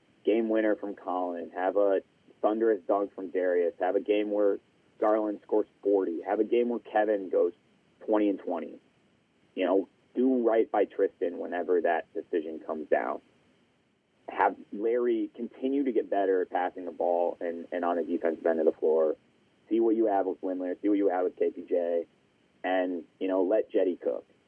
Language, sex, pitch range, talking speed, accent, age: English, male, 95-140 Hz, 180 wpm, American, 30-49